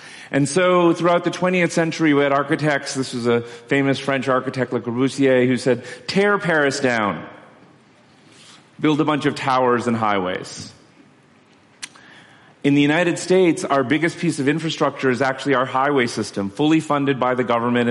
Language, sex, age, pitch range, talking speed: English, male, 40-59, 125-160 Hz, 160 wpm